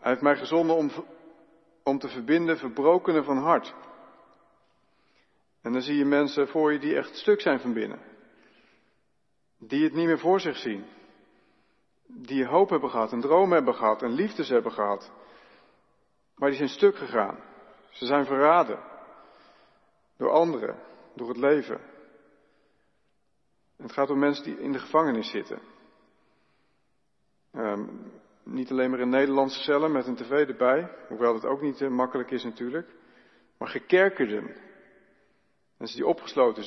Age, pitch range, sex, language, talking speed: 50-69, 125-155 Hz, male, Dutch, 145 wpm